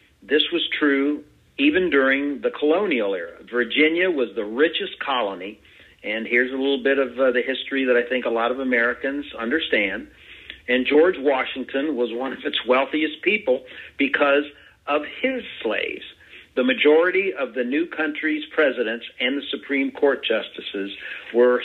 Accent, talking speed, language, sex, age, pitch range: American, 155 wpm, English, male, 50-69, 120-150 Hz